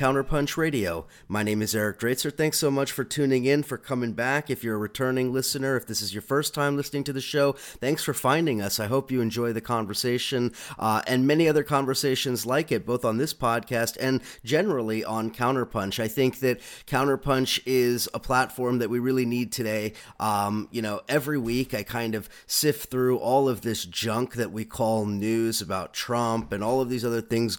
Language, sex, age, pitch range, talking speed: English, male, 30-49, 110-135 Hz, 205 wpm